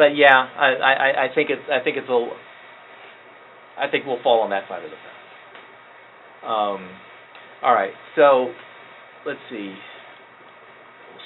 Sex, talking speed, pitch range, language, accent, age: male, 150 wpm, 110-145 Hz, English, American, 40-59